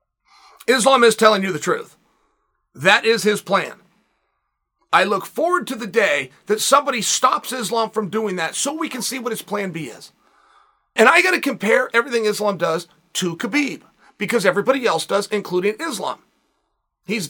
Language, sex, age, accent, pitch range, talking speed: English, male, 40-59, American, 205-265 Hz, 170 wpm